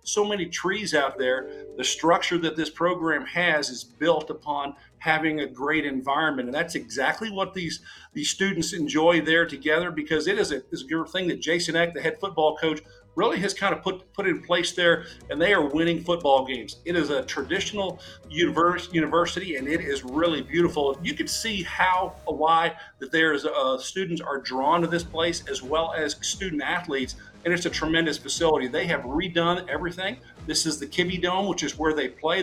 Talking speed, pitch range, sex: 195 wpm, 155-180 Hz, male